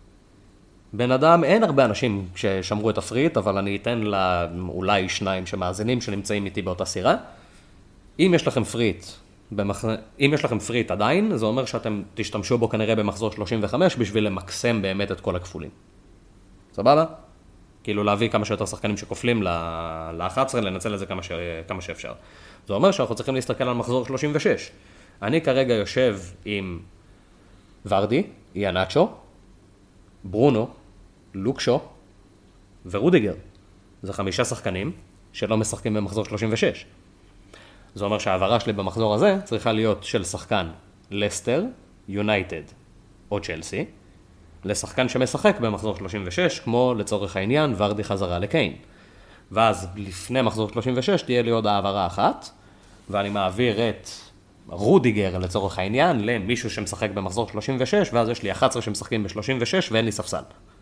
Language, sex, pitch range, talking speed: Hebrew, male, 95-115 Hz, 130 wpm